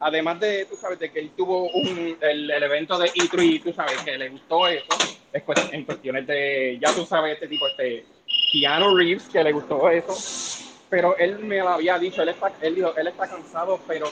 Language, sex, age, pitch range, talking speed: Spanish, male, 30-49, 150-200 Hz, 215 wpm